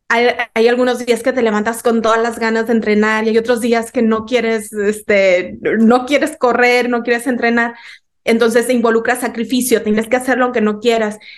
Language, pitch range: English, 215-245 Hz